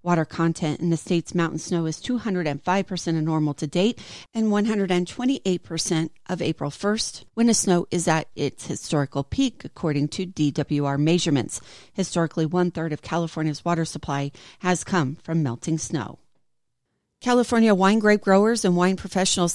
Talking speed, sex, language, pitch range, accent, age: 145 wpm, female, English, 160-185 Hz, American, 40-59